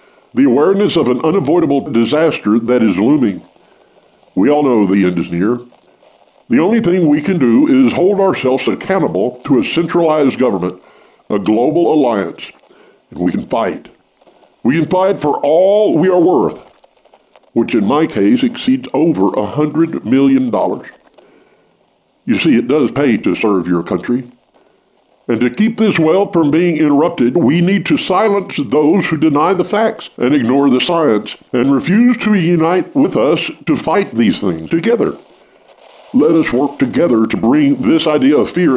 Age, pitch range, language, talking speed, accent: 60-79, 125-210 Hz, English, 160 wpm, American